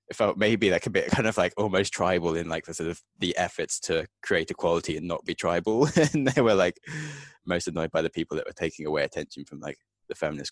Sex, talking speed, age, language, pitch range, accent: male, 240 wpm, 20-39, English, 75-95 Hz, British